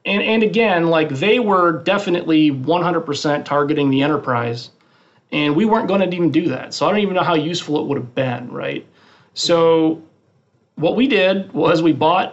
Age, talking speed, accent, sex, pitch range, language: 40-59, 185 wpm, American, male, 145-185 Hz, English